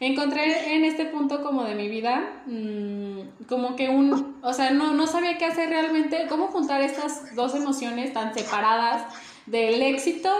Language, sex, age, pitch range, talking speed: Spanish, female, 10-29, 235-290 Hz, 165 wpm